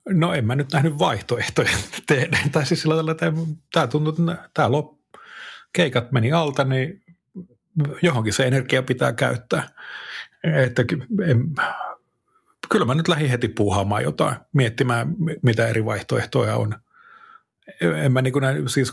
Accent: native